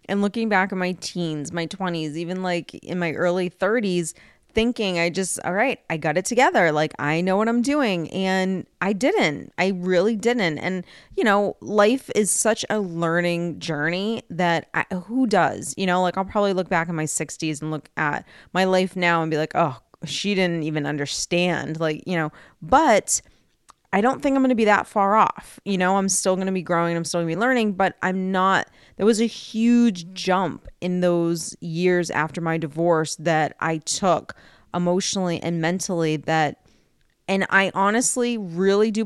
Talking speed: 190 wpm